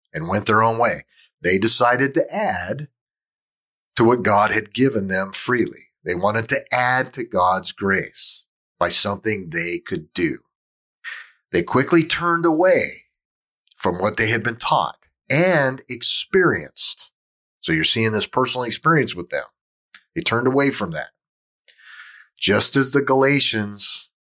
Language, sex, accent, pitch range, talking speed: English, male, American, 110-150 Hz, 140 wpm